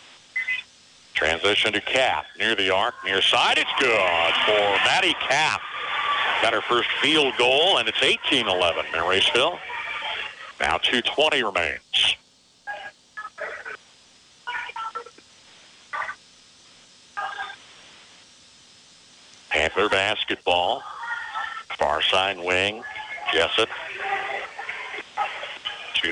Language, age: English, 60-79